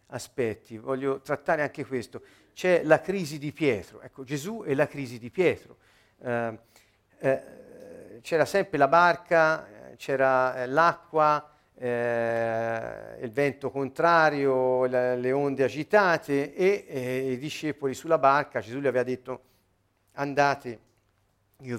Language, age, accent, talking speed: Italian, 50-69, native, 125 wpm